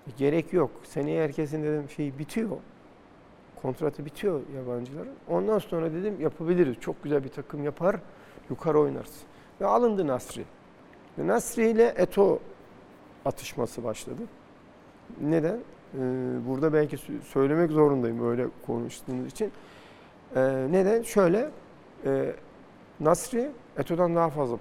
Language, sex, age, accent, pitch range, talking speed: Turkish, male, 50-69, native, 130-180 Hz, 100 wpm